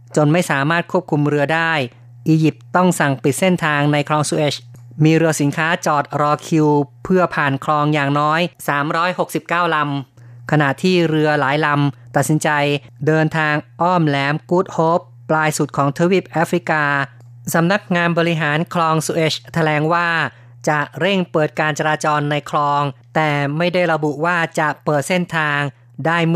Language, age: Thai, 20-39